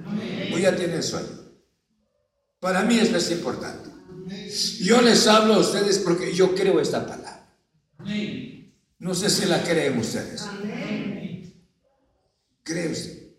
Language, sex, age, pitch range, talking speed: Spanish, male, 60-79, 175-220 Hz, 115 wpm